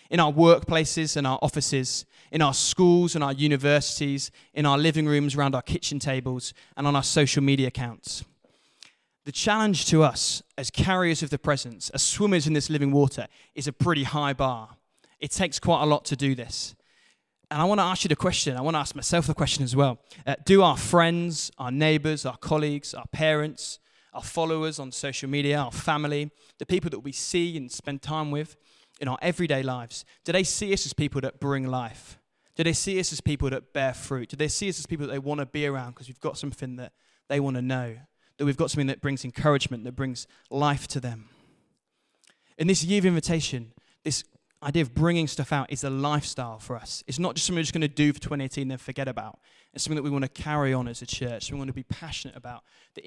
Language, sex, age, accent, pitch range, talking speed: English, male, 20-39, British, 130-155 Hz, 225 wpm